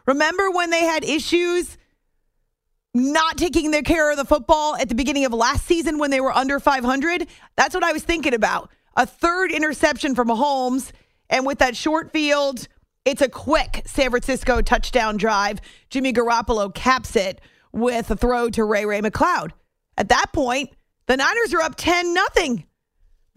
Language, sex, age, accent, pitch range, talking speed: English, female, 40-59, American, 230-300 Hz, 165 wpm